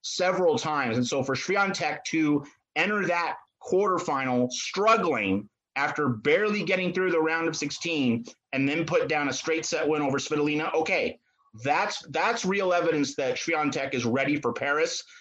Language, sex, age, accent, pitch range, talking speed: English, male, 30-49, American, 140-180 Hz, 160 wpm